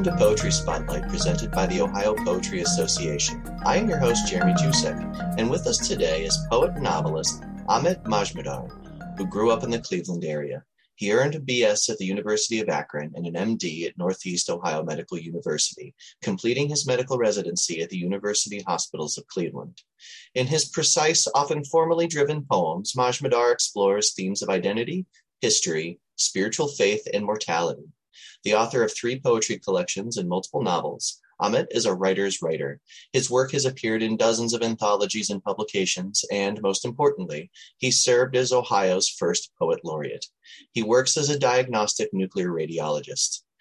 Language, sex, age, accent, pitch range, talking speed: English, male, 30-49, American, 100-155 Hz, 160 wpm